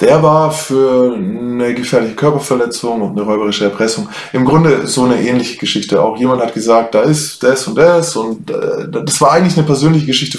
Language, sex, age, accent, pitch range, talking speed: German, male, 20-39, German, 115-150 Hz, 185 wpm